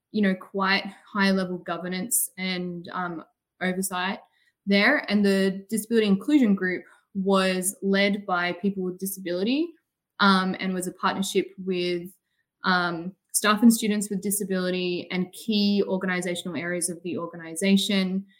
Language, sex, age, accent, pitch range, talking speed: English, female, 20-39, Australian, 180-210 Hz, 130 wpm